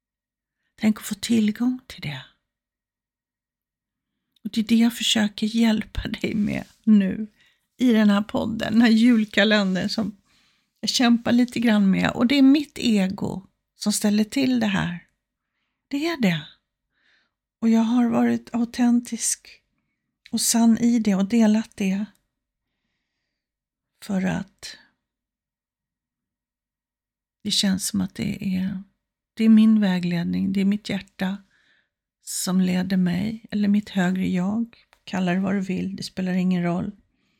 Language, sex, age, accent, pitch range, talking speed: Swedish, female, 60-79, native, 185-225 Hz, 135 wpm